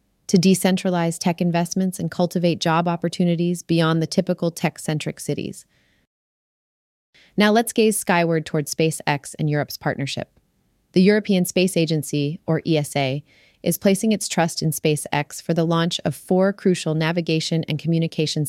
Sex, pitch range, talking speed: female, 155-180 Hz, 140 wpm